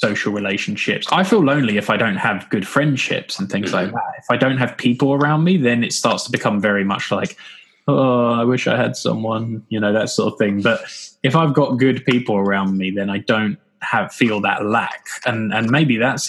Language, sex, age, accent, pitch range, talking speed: English, male, 10-29, British, 105-130 Hz, 225 wpm